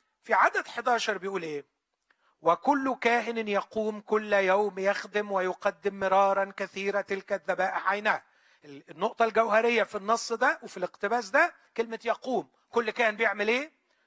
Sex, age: male, 40-59